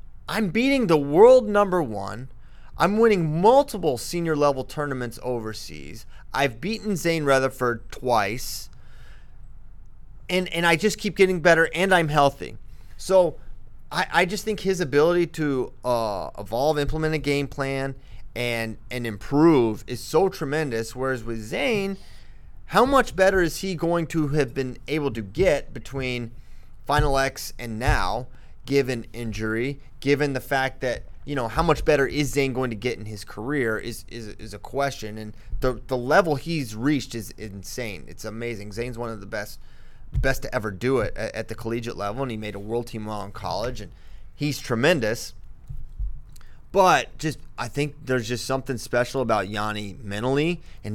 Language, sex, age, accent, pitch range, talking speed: English, male, 30-49, American, 115-150 Hz, 165 wpm